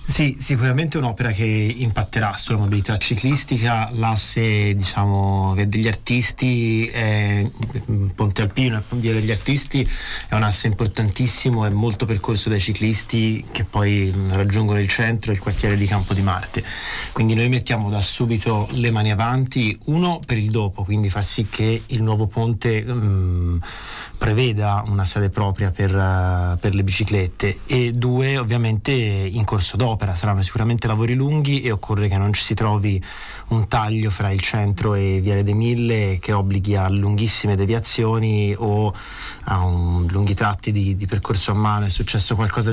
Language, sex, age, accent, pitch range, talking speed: Italian, male, 30-49, native, 100-115 Hz, 155 wpm